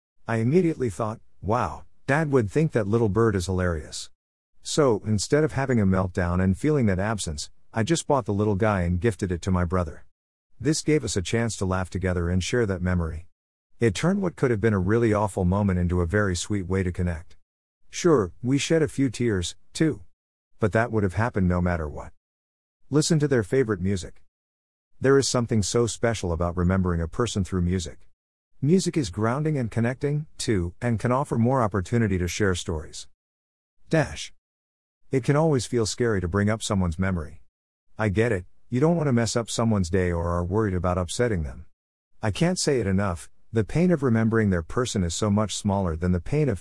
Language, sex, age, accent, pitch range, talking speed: English, male, 50-69, American, 85-120 Hz, 200 wpm